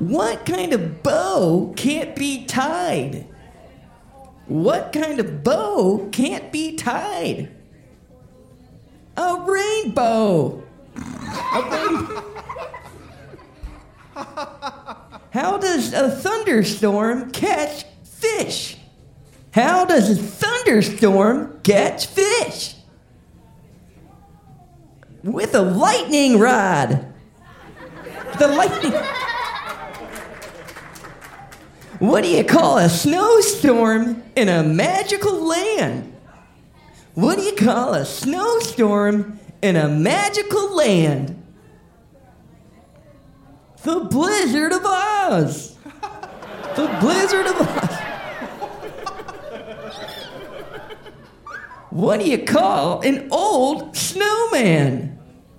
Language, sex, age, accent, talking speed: English, male, 40-59, American, 75 wpm